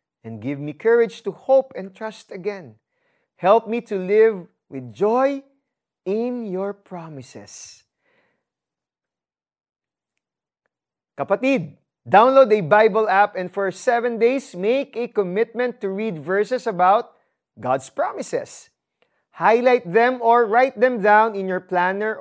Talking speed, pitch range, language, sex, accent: 120 wpm, 180-240 Hz, Filipino, male, native